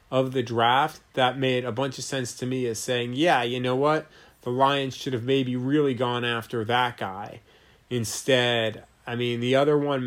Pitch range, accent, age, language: 120-150 Hz, American, 30-49, English